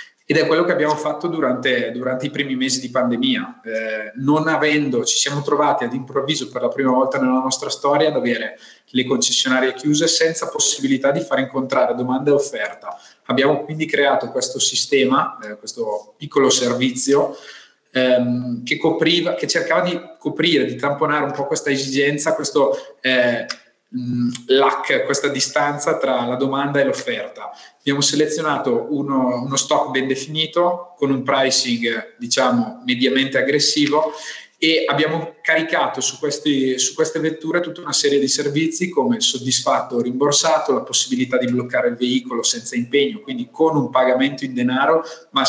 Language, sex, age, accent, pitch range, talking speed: Italian, male, 20-39, native, 130-165 Hz, 155 wpm